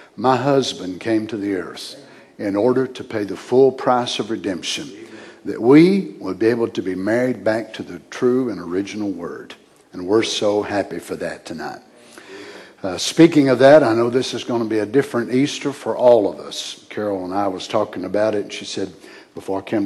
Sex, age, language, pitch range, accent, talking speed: male, 60-79, English, 100-125 Hz, American, 205 wpm